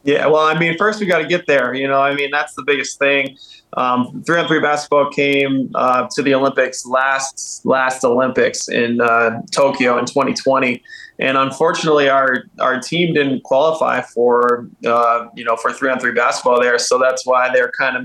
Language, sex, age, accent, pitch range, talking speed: English, male, 20-39, American, 125-145 Hz, 195 wpm